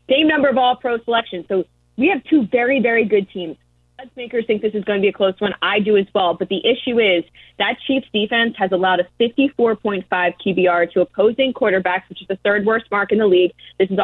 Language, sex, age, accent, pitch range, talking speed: English, female, 20-39, American, 180-220 Hz, 230 wpm